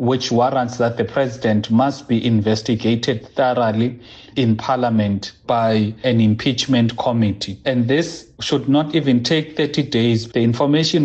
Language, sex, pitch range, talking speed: English, male, 110-140 Hz, 135 wpm